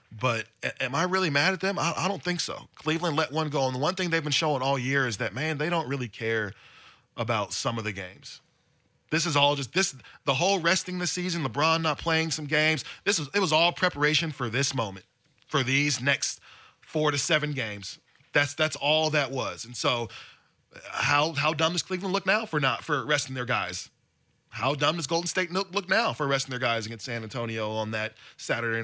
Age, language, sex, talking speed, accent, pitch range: 20-39, English, male, 215 wpm, American, 125-165 Hz